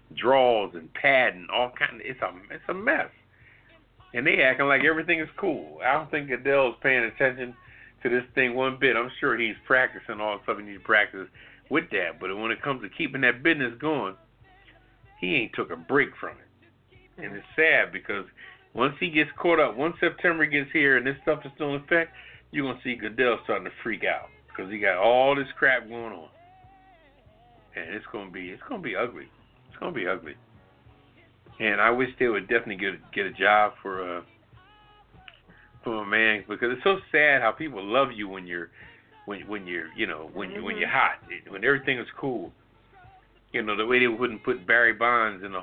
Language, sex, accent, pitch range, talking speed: English, male, American, 110-135 Hz, 205 wpm